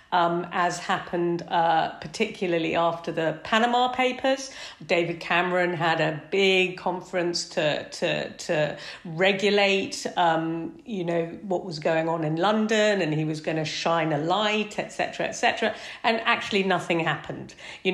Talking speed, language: 150 wpm, English